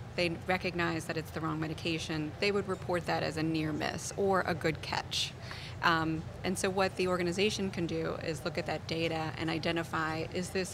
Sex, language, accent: female, English, American